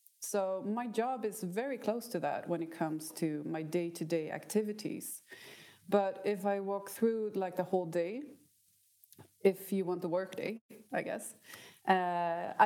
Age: 30-49